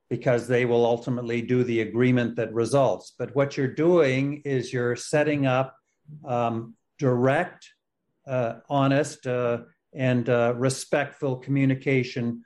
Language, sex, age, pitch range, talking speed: English, male, 50-69, 125-155 Hz, 125 wpm